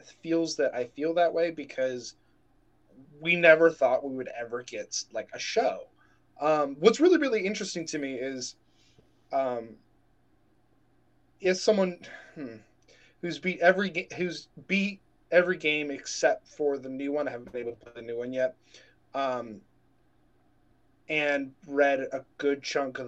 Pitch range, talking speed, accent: 135-190 Hz, 150 wpm, American